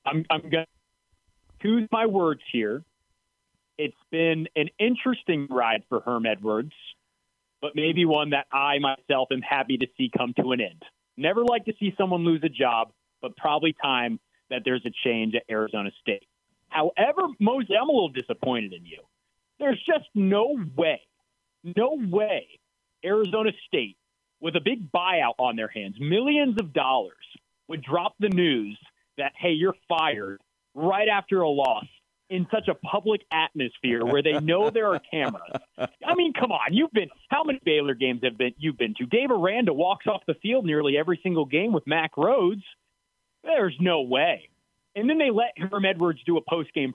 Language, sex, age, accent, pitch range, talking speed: English, male, 30-49, American, 140-210 Hz, 175 wpm